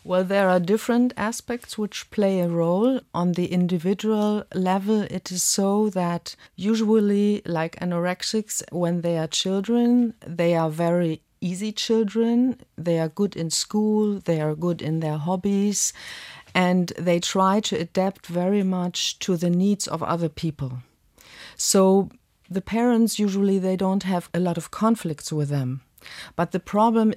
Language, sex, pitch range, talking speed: English, female, 165-205 Hz, 150 wpm